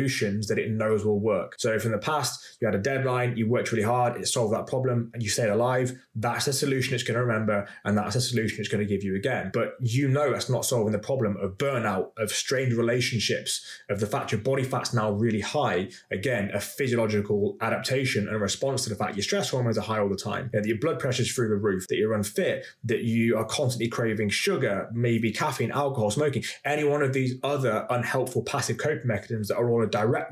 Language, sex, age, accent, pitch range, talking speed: English, male, 20-39, British, 110-130 Hz, 235 wpm